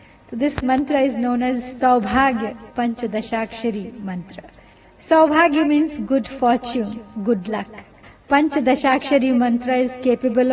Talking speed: 110 wpm